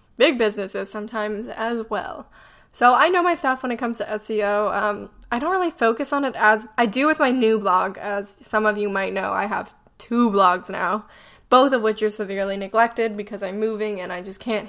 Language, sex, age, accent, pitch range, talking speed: English, female, 10-29, American, 200-225 Hz, 215 wpm